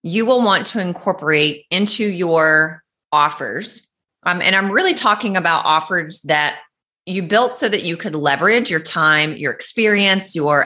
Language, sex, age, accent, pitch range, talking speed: English, female, 30-49, American, 155-210 Hz, 160 wpm